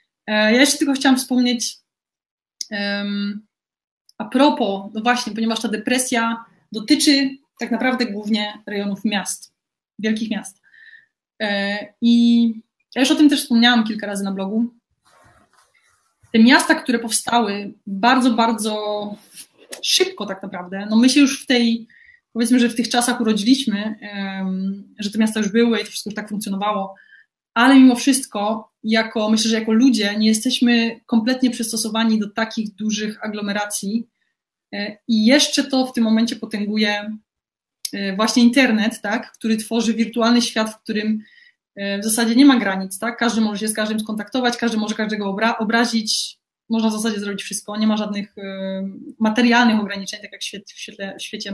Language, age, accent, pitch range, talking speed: Polish, 20-39, native, 210-240 Hz, 150 wpm